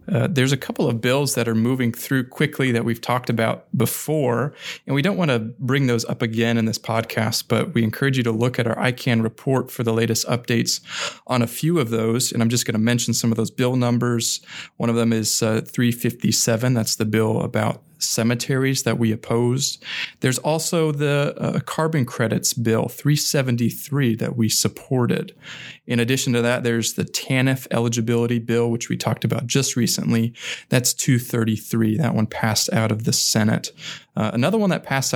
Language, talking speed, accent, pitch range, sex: English, 190 wpm, American, 115-135 Hz, male